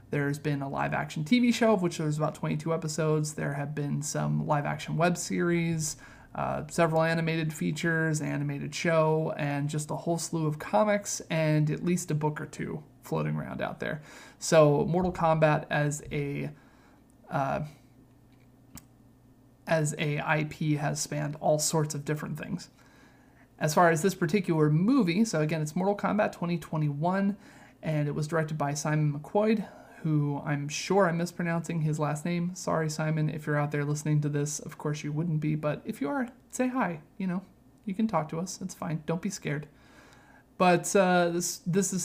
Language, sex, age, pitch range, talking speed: English, male, 30-49, 145-175 Hz, 175 wpm